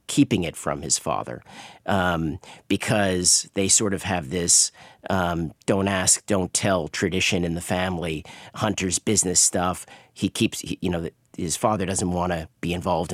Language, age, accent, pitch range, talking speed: English, 40-59, American, 90-110 Hz, 160 wpm